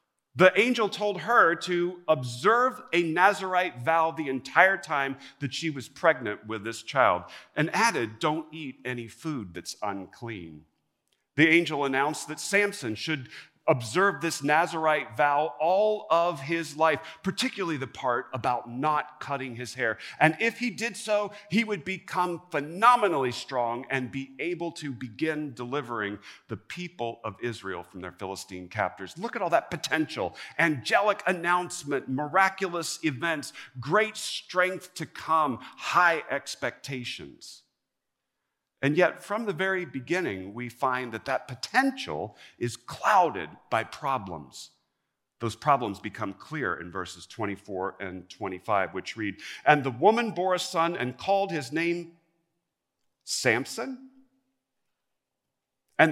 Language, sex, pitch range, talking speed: English, male, 120-180 Hz, 135 wpm